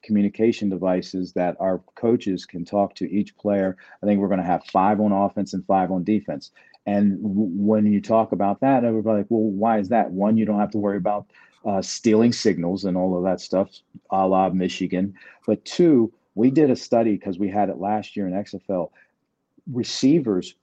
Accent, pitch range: American, 95-110 Hz